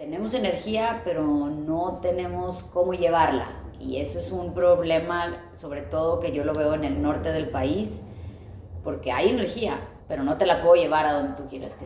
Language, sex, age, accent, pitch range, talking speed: Spanish, female, 20-39, Mexican, 135-210 Hz, 185 wpm